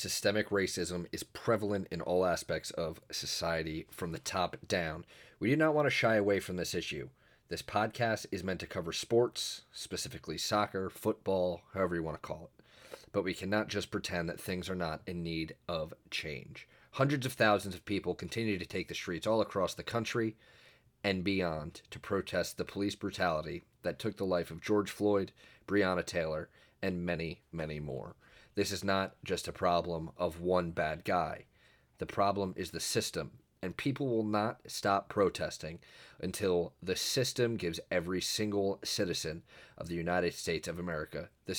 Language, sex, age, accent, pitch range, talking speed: English, male, 30-49, American, 85-105 Hz, 175 wpm